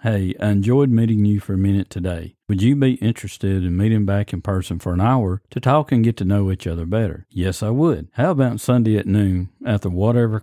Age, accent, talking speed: 50-69, American, 235 wpm